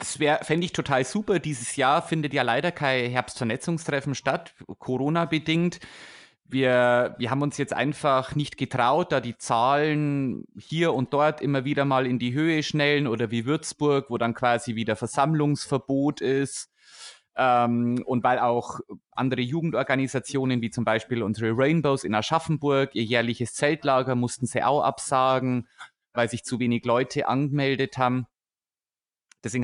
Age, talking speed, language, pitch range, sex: 30-49, 150 wpm, German, 120-140 Hz, male